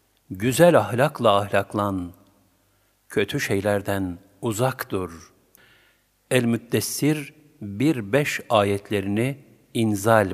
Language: Turkish